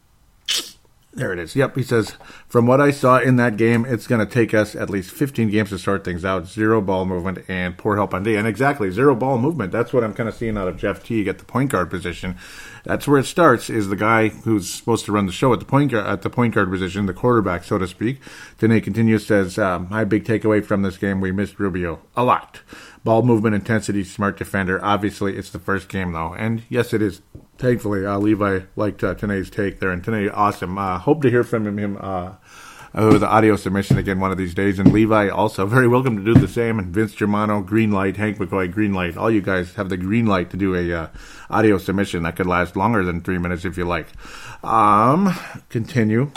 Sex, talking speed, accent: male, 235 wpm, American